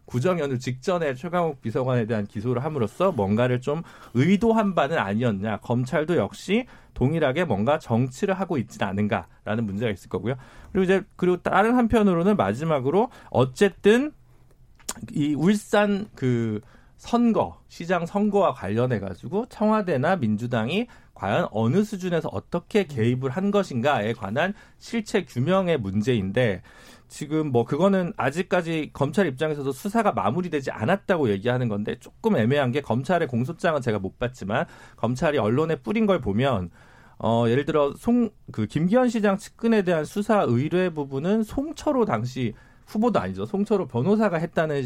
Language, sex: Korean, male